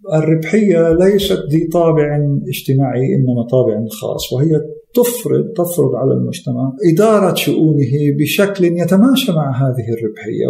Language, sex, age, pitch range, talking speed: Arabic, male, 50-69, 125-175 Hz, 115 wpm